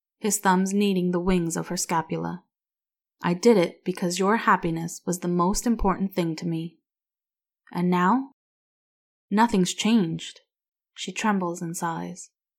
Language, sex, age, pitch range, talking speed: English, female, 20-39, 175-210 Hz, 140 wpm